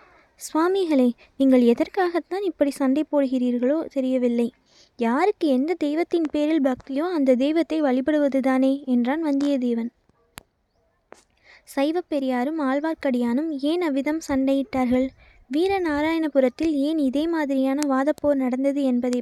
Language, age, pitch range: Tamil, 20-39, 260-310 Hz